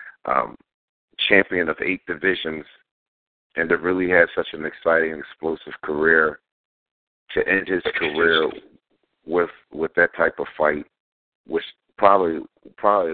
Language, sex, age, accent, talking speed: English, male, 50-69, American, 125 wpm